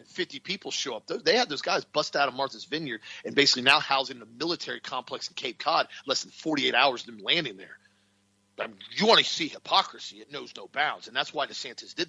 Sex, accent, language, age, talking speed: male, American, English, 40-59, 240 wpm